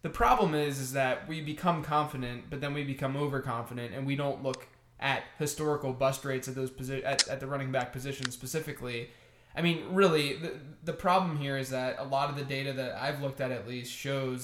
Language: English